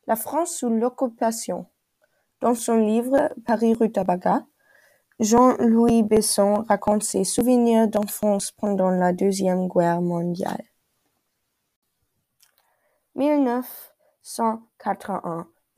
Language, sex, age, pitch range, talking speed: German, female, 20-39, 190-225 Hz, 75 wpm